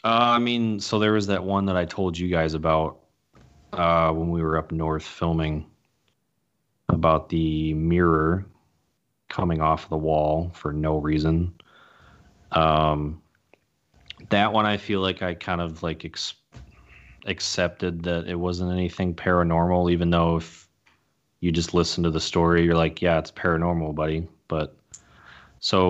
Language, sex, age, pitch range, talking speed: English, male, 30-49, 80-95 Hz, 150 wpm